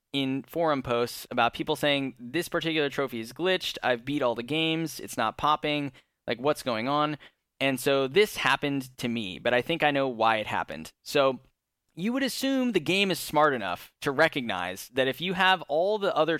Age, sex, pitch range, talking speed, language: 10-29, male, 125-160 Hz, 200 wpm, English